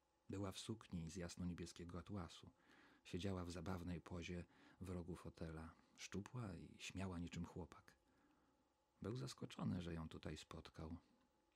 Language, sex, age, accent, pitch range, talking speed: Polish, male, 40-59, native, 85-105 Hz, 125 wpm